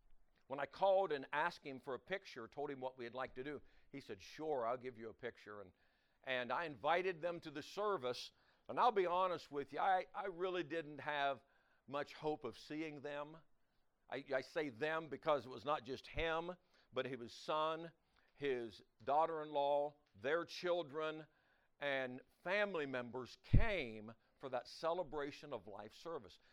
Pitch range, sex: 130-180 Hz, male